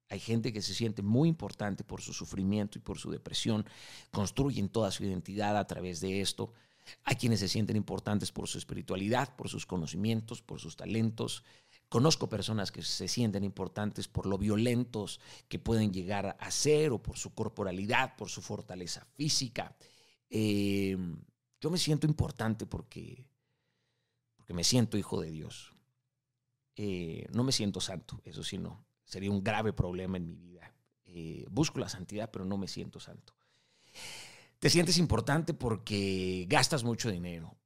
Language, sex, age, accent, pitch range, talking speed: Spanish, male, 40-59, Mexican, 100-130 Hz, 160 wpm